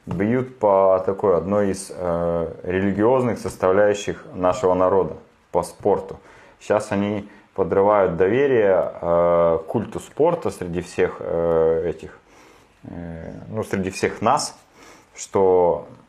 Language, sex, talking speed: Russian, male, 110 wpm